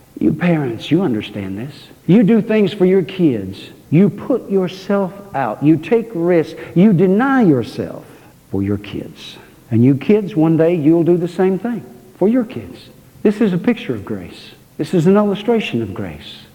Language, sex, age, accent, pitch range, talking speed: English, male, 60-79, American, 120-205 Hz, 180 wpm